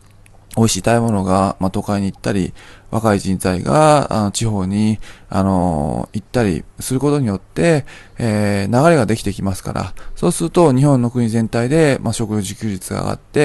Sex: male